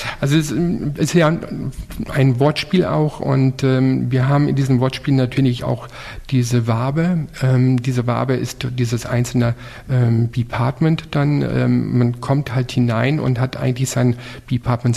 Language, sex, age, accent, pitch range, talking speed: German, male, 50-69, German, 120-140 Hz, 150 wpm